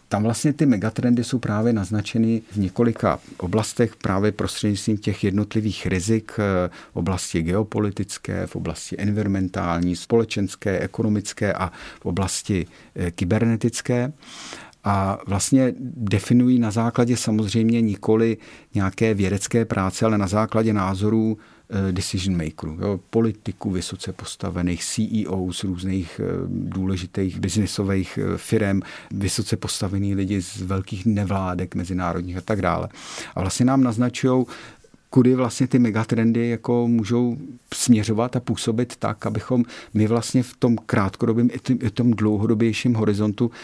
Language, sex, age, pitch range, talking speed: Czech, male, 50-69, 95-115 Hz, 120 wpm